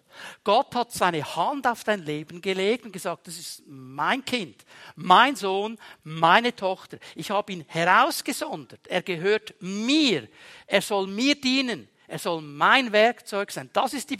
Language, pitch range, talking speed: German, 190-255 Hz, 155 wpm